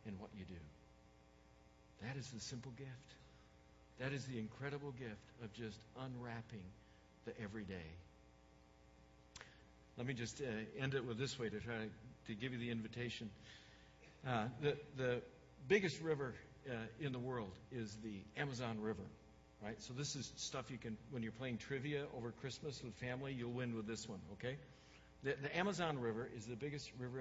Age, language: 60-79, English